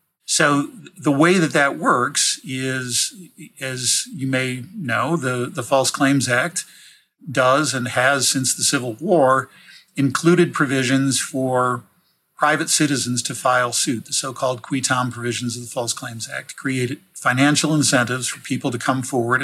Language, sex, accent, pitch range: English, male, American, 125-145 Hz